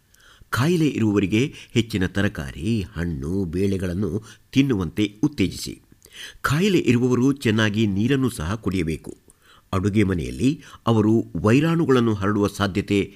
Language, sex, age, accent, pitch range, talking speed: Kannada, male, 50-69, native, 95-125 Hz, 90 wpm